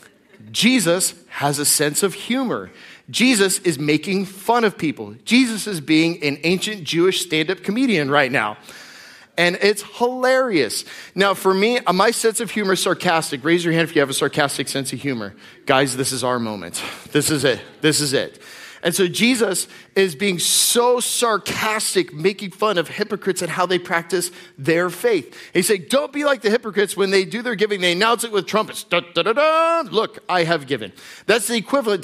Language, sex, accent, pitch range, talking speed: English, male, American, 165-220 Hz, 190 wpm